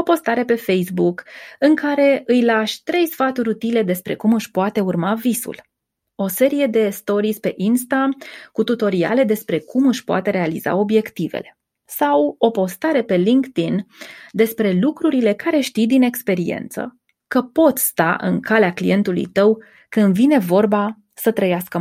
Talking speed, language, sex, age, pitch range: 150 wpm, Romanian, female, 20-39, 195-250 Hz